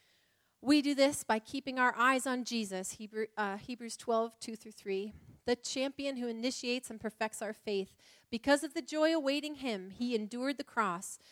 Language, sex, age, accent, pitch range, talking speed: English, female, 30-49, American, 195-250 Hz, 170 wpm